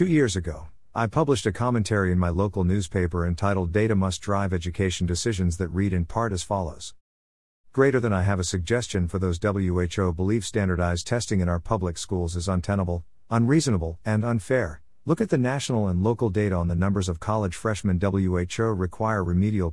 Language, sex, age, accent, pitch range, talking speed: English, male, 50-69, American, 90-110 Hz, 185 wpm